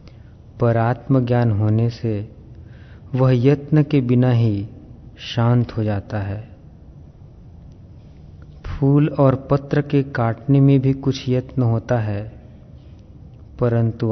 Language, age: Hindi, 40-59